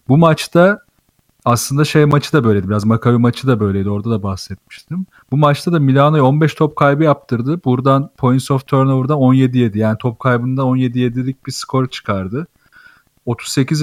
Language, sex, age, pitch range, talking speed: Turkish, male, 40-59, 125-150 Hz, 155 wpm